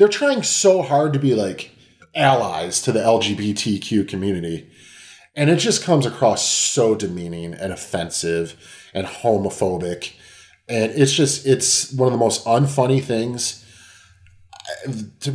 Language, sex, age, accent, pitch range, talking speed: English, male, 30-49, American, 95-130 Hz, 135 wpm